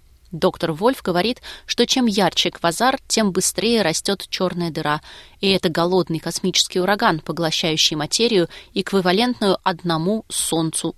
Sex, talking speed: female, 120 wpm